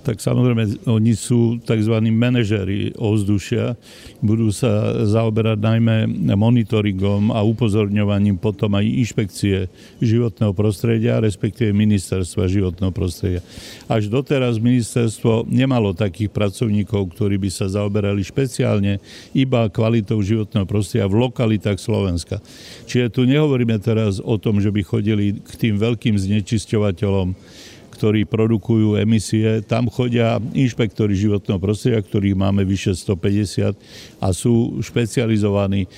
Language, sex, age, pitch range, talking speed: Slovak, male, 60-79, 100-115 Hz, 115 wpm